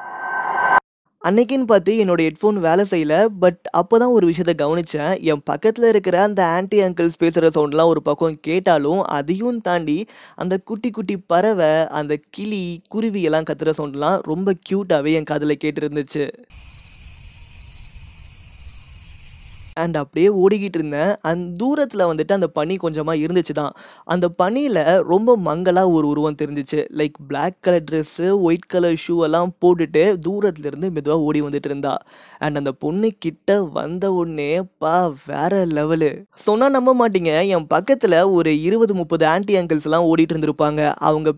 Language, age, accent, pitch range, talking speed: Tamil, 20-39, native, 150-190 Hz, 130 wpm